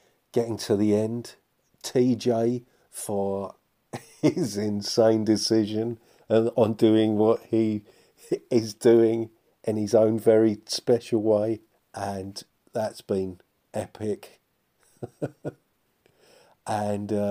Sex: male